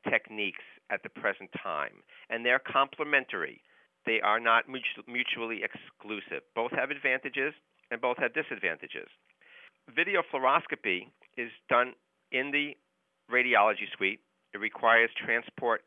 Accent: American